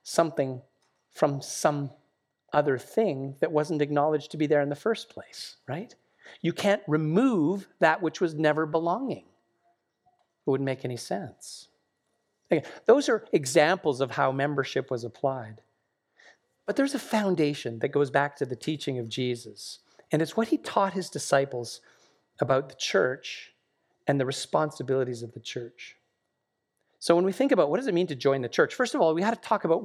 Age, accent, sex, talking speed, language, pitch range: 40-59, American, male, 175 wpm, English, 135-195 Hz